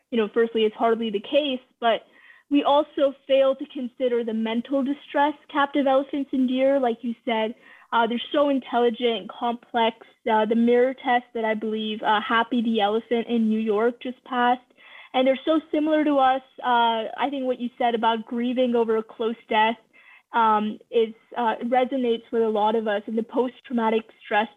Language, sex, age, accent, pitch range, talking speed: English, female, 20-39, American, 225-265 Hz, 185 wpm